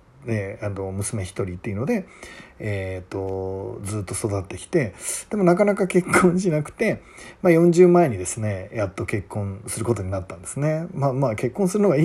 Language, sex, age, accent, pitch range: Japanese, male, 40-59, native, 95-155 Hz